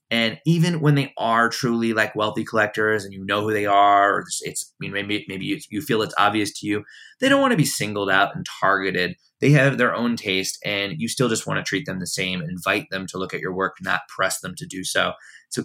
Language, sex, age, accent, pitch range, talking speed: English, male, 20-39, American, 95-115 Hz, 240 wpm